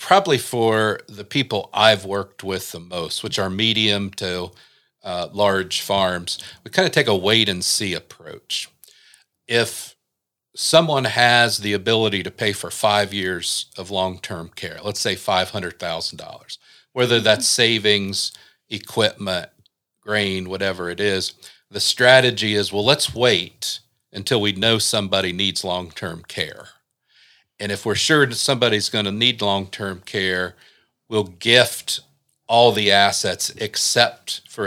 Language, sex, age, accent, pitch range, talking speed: English, male, 50-69, American, 95-115 Hz, 135 wpm